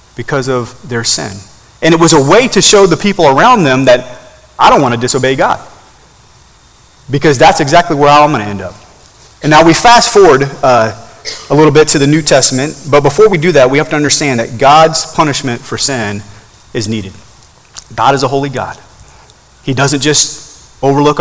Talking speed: 195 wpm